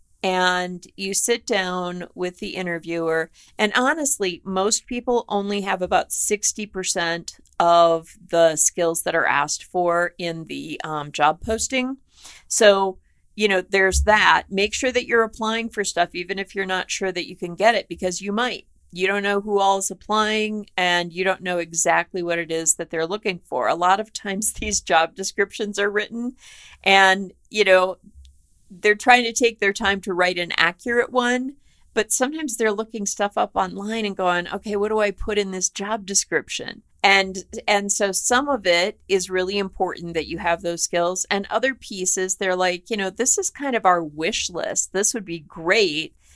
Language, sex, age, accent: English, female, 40-59, American